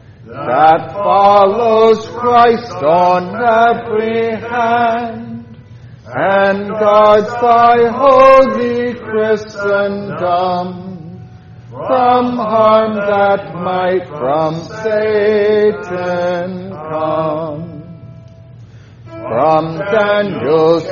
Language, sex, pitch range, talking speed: English, male, 160-225 Hz, 55 wpm